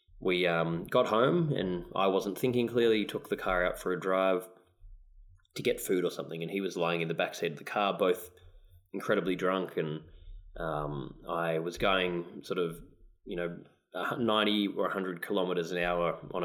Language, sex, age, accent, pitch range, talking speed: English, male, 20-39, Australian, 85-100 Hz, 185 wpm